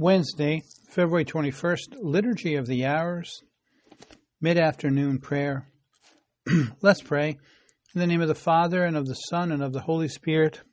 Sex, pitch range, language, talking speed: male, 130-150 Hz, English, 145 wpm